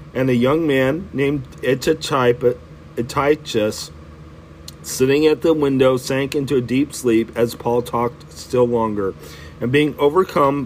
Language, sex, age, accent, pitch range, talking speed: English, male, 40-59, American, 115-140 Hz, 130 wpm